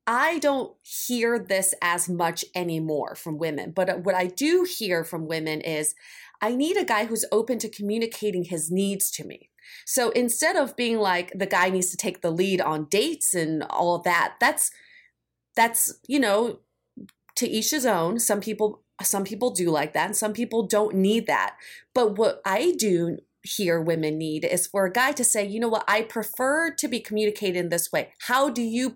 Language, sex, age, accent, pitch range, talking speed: English, female, 30-49, American, 180-240 Hz, 195 wpm